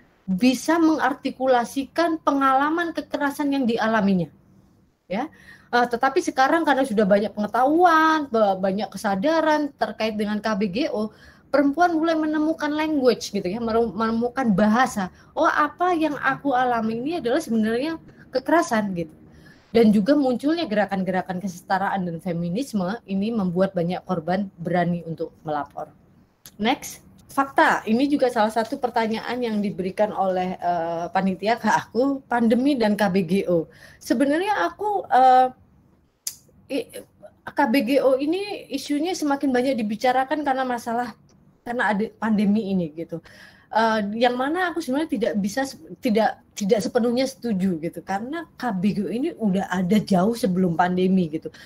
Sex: female